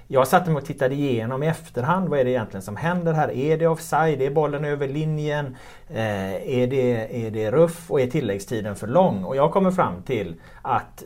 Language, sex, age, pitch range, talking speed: Swedish, male, 30-49, 110-160 Hz, 210 wpm